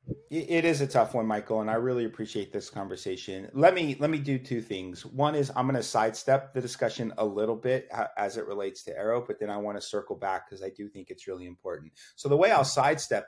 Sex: male